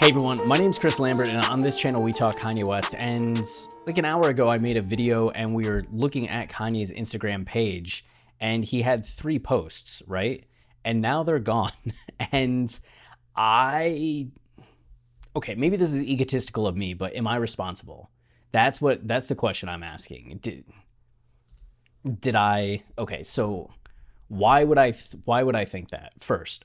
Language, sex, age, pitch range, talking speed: English, male, 20-39, 100-130 Hz, 170 wpm